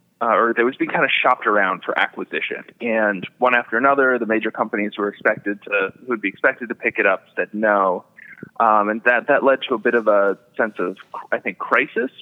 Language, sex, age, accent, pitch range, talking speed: English, male, 20-39, American, 105-130 Hz, 220 wpm